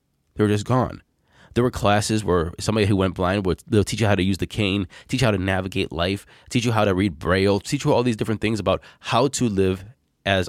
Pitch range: 90-115 Hz